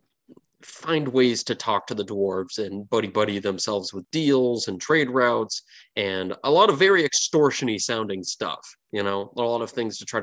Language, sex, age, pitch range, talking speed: English, male, 20-39, 100-125 Hz, 180 wpm